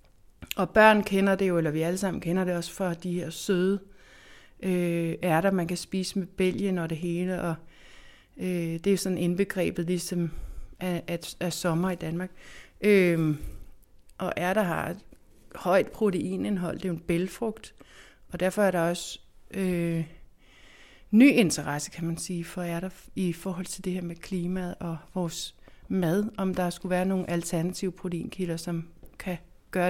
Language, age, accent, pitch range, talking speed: Danish, 60-79, native, 170-200 Hz, 165 wpm